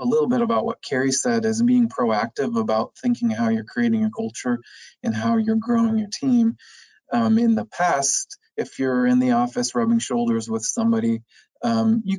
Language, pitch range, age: English, 225-240 Hz, 20-39